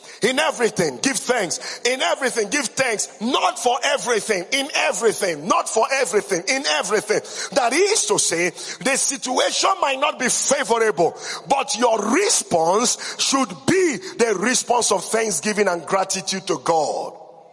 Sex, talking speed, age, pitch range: male, 140 wpm, 50-69, 210-290 Hz